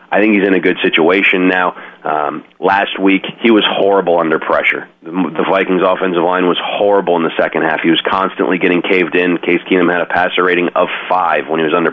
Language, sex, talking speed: English, male, 220 wpm